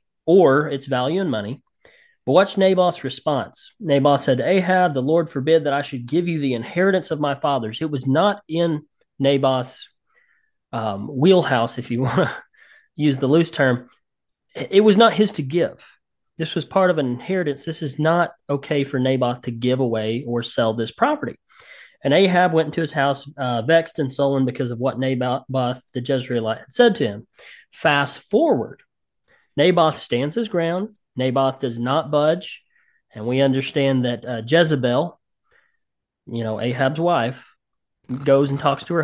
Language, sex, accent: English, male, American